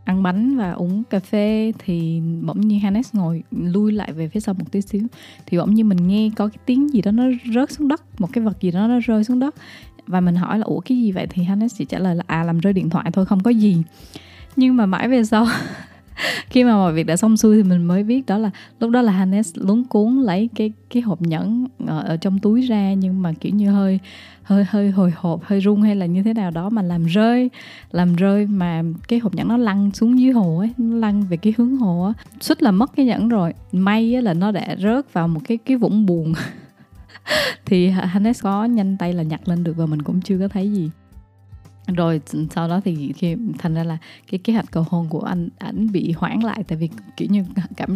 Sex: female